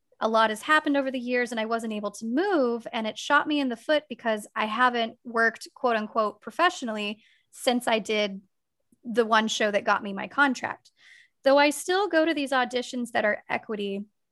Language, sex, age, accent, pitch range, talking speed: English, female, 20-39, American, 215-275 Hz, 200 wpm